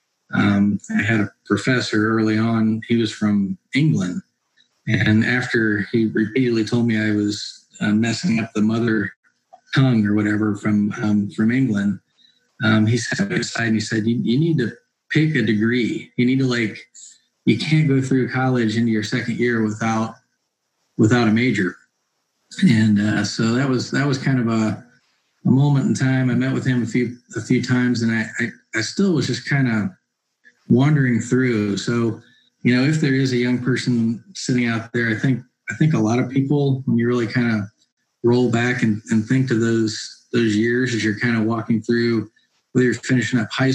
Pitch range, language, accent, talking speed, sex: 110-125 Hz, English, American, 195 wpm, male